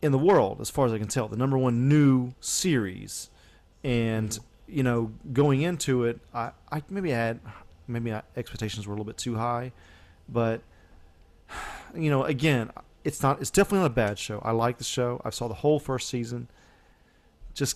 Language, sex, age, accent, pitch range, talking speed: English, male, 30-49, American, 110-145 Hz, 185 wpm